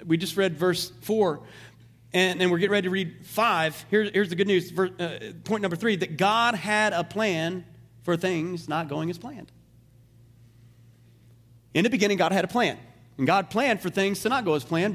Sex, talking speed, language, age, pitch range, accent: male, 195 wpm, English, 40-59, 165-225 Hz, American